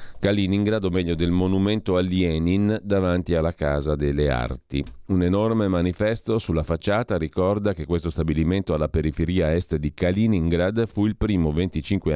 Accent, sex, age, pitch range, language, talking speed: native, male, 40-59, 80-100 Hz, Italian, 150 wpm